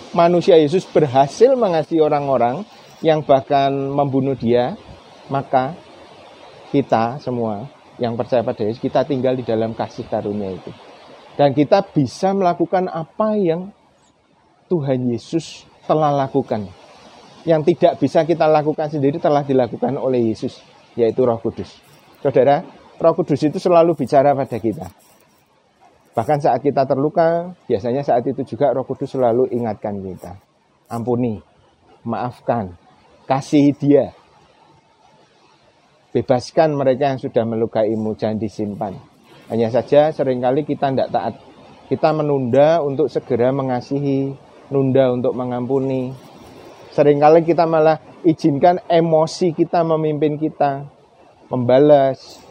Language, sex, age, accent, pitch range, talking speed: Indonesian, male, 30-49, native, 125-155 Hz, 115 wpm